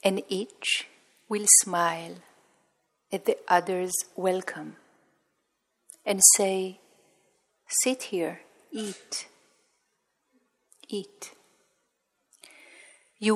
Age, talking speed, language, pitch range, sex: 40-59, 65 wpm, Hebrew, 180-210 Hz, female